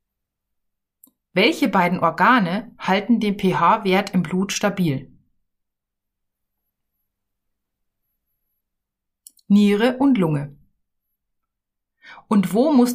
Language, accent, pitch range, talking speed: German, German, 165-240 Hz, 70 wpm